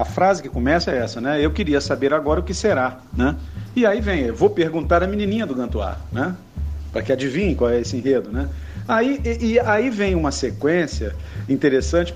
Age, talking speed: 50-69, 205 wpm